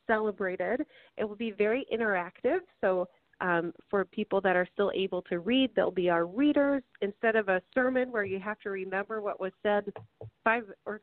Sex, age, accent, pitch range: female, 30-49, American, 185-235 Hz